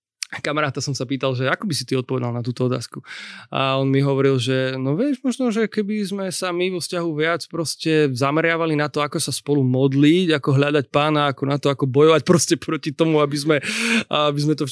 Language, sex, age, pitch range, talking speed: Slovak, male, 20-39, 130-155 Hz, 220 wpm